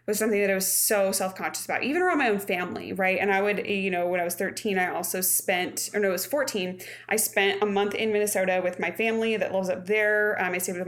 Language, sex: English, female